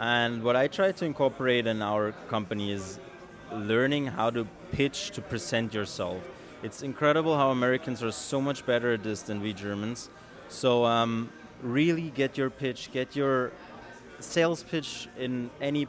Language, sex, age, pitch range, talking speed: English, male, 20-39, 110-140 Hz, 160 wpm